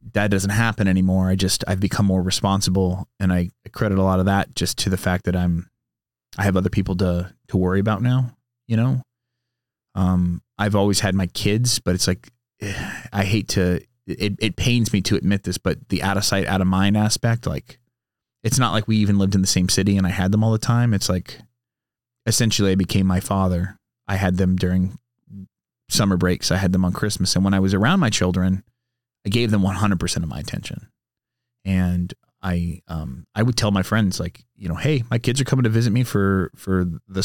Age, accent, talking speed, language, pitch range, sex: 30-49, American, 215 wpm, English, 95-115 Hz, male